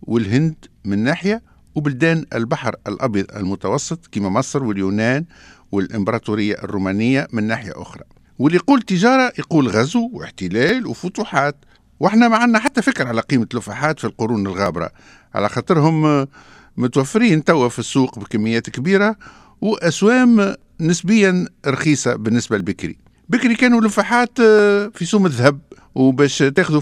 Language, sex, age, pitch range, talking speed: French, male, 50-69, 120-195 Hz, 115 wpm